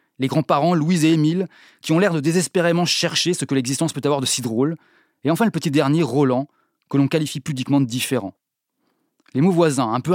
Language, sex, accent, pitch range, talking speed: French, male, French, 135-165 Hz, 215 wpm